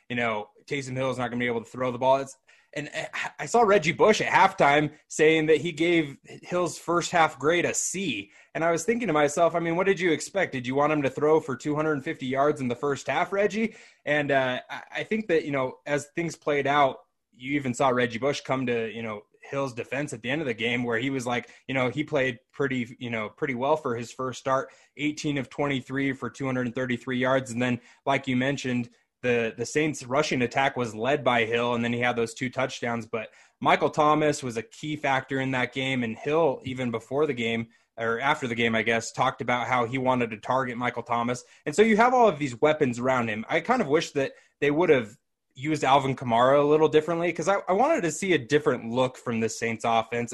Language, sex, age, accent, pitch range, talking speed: English, male, 20-39, American, 125-150 Hz, 235 wpm